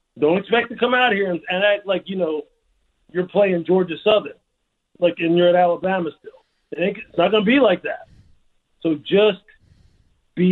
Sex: male